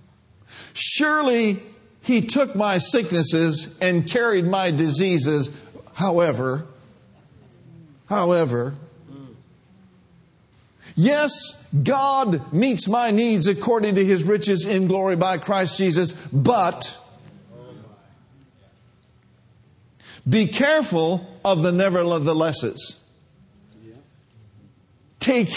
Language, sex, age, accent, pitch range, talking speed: English, male, 50-69, American, 150-220 Hz, 75 wpm